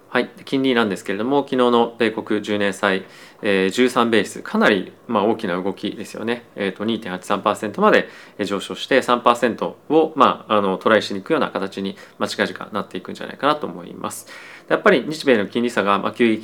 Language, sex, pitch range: Japanese, male, 100-125 Hz